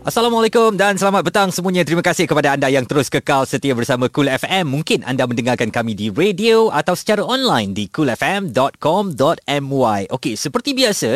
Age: 20-39